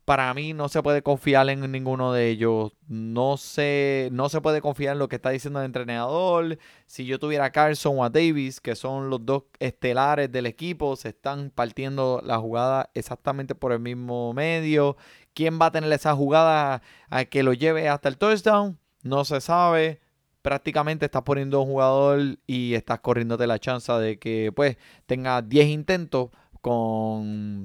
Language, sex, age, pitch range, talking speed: Spanish, male, 20-39, 120-150 Hz, 175 wpm